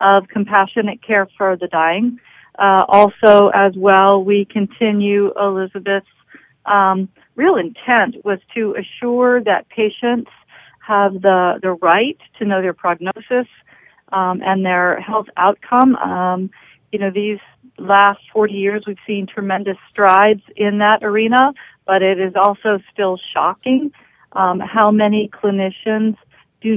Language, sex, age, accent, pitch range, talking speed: English, female, 40-59, American, 185-215 Hz, 130 wpm